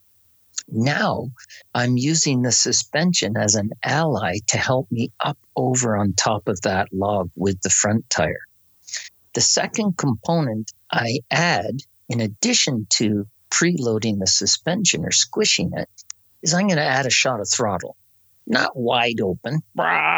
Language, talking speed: English, 145 wpm